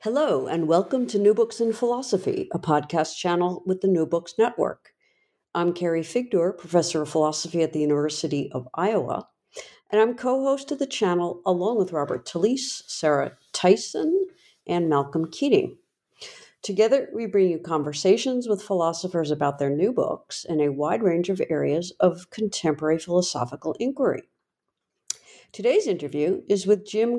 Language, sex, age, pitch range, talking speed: English, female, 60-79, 160-240 Hz, 150 wpm